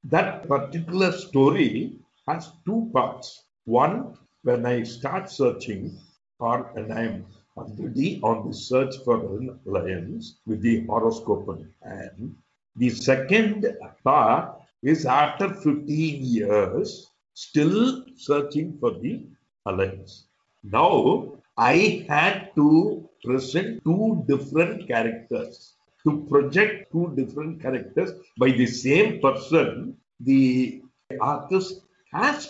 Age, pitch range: 60-79, 125-185 Hz